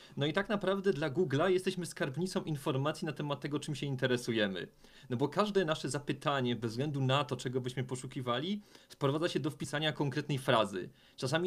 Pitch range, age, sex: 125-155 Hz, 40-59, male